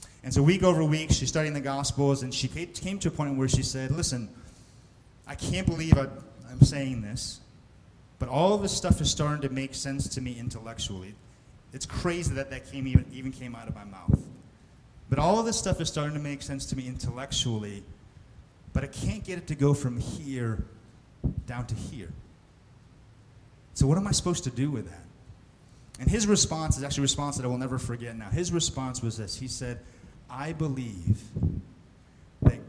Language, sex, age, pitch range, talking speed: English, male, 30-49, 105-140 Hz, 195 wpm